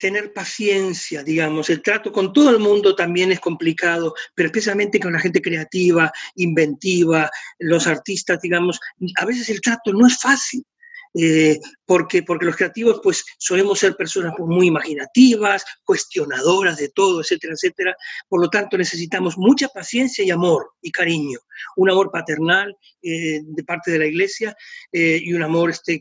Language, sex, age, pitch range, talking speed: Spanish, male, 40-59, 175-255 Hz, 160 wpm